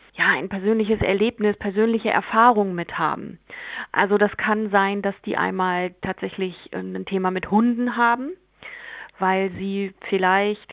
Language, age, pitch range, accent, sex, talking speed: German, 30-49, 185-215 Hz, German, female, 135 wpm